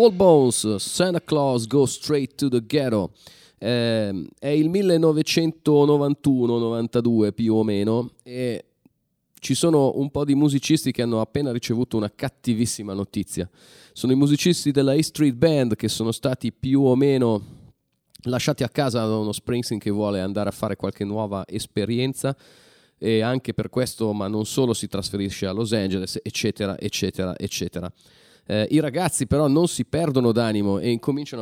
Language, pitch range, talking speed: Italian, 110-140 Hz, 155 wpm